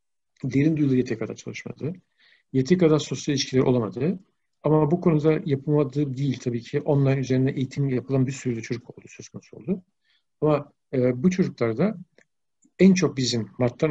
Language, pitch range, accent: Turkish, 130-175 Hz, native